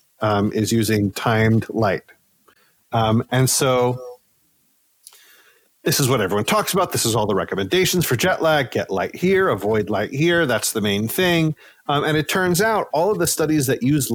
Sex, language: male, English